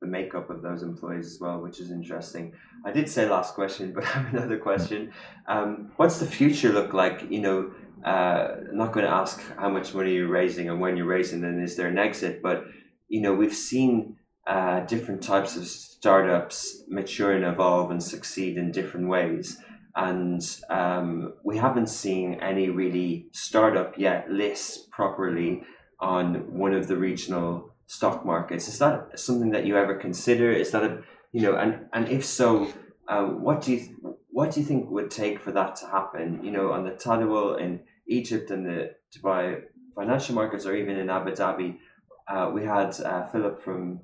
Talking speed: 190 wpm